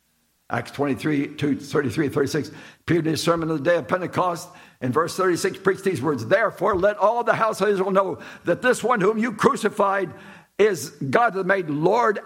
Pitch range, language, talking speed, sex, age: 140-215 Hz, English, 180 wpm, male, 60-79